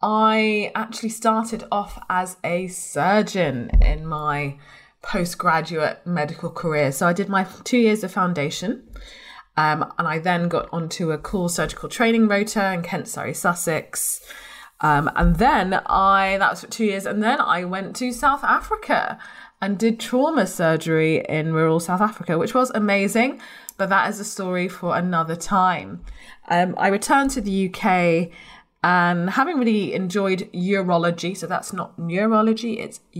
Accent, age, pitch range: British, 20-39, 170-220 Hz